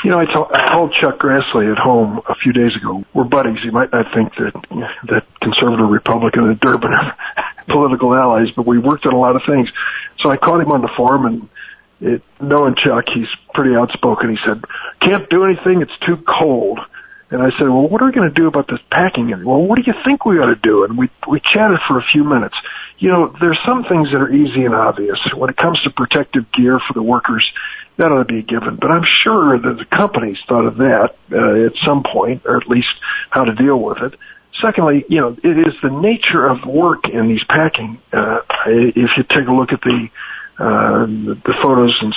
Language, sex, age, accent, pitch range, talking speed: English, male, 50-69, American, 120-180 Hz, 225 wpm